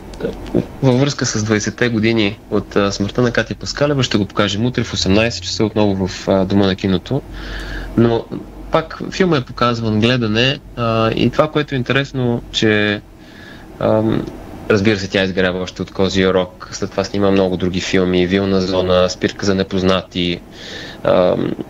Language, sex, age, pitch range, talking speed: Bulgarian, male, 30-49, 95-125 Hz, 145 wpm